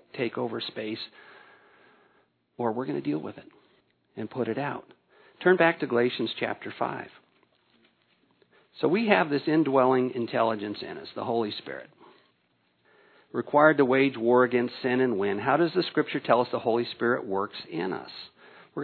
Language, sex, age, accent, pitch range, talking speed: English, male, 50-69, American, 120-155 Hz, 165 wpm